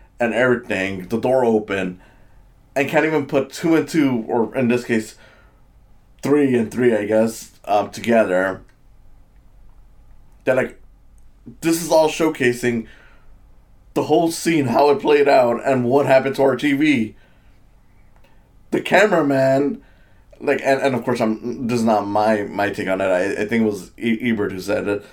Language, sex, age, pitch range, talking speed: English, male, 20-39, 105-135 Hz, 160 wpm